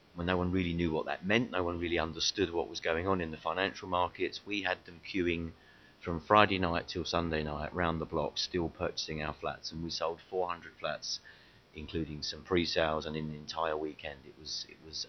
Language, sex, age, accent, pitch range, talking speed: English, male, 30-49, British, 80-90 Hz, 210 wpm